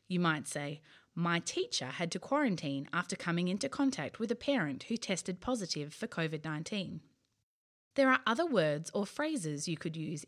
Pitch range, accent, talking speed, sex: 155-220 Hz, Australian, 170 wpm, female